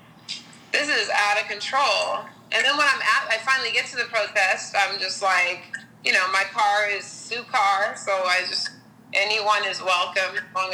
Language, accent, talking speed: English, American, 190 wpm